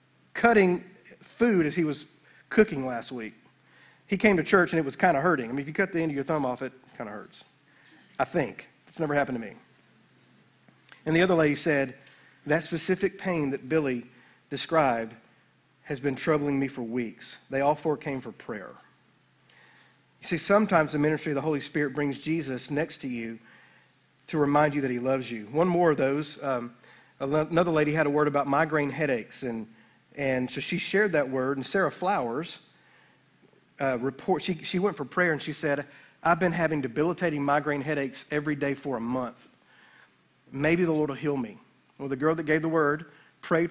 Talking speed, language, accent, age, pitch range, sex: 195 wpm, English, American, 40-59, 135-160 Hz, male